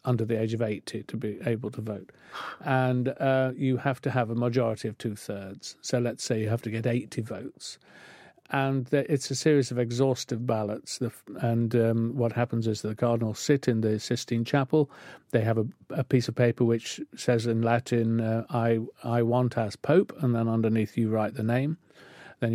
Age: 50-69